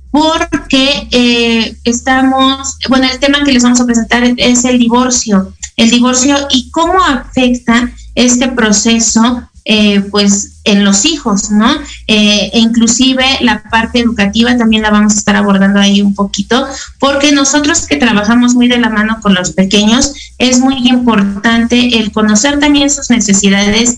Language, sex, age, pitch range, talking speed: Spanish, female, 30-49, 210-255 Hz, 155 wpm